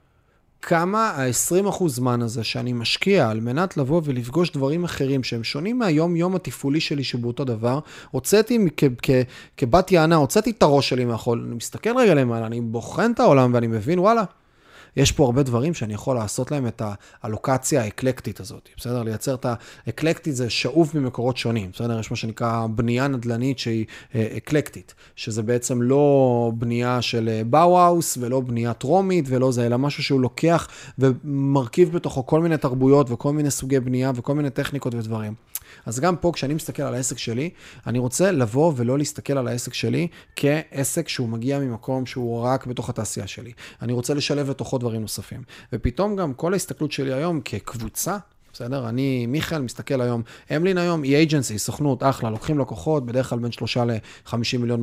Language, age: Hebrew, 30-49